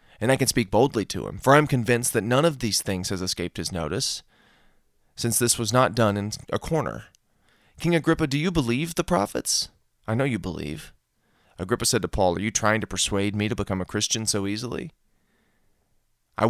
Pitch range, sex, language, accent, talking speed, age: 100-125 Hz, male, English, American, 205 wpm, 30-49